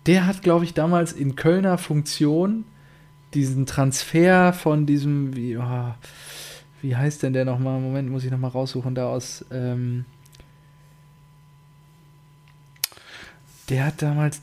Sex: male